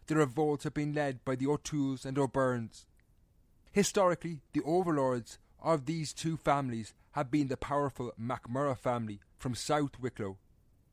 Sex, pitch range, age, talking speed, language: male, 115-140 Hz, 30-49, 145 wpm, English